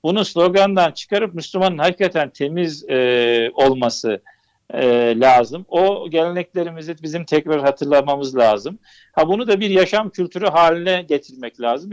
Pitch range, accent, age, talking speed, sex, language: 145-185 Hz, native, 50-69, 125 wpm, male, Turkish